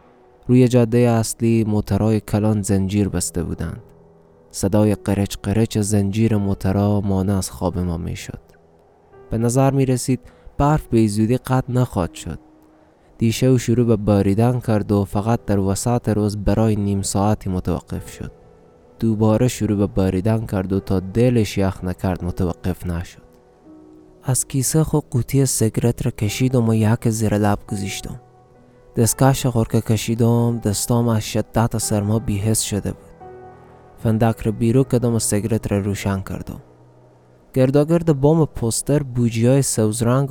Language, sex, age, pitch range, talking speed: Persian, male, 20-39, 100-120 Hz, 140 wpm